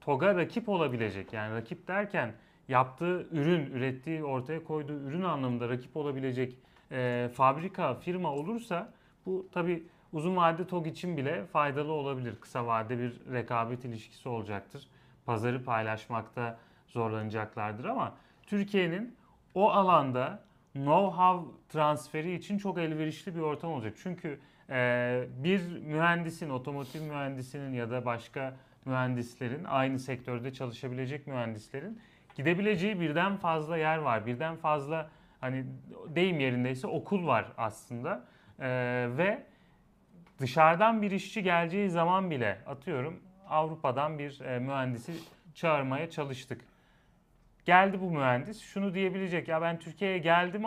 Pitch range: 130-175 Hz